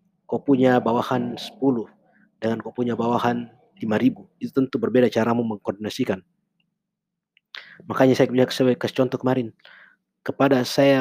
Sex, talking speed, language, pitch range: male, 120 wpm, Indonesian, 115-135 Hz